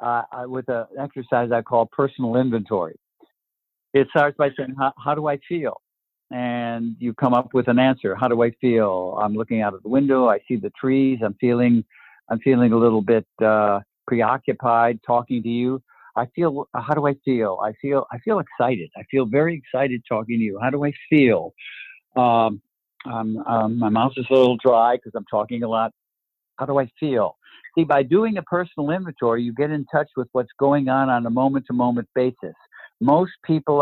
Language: English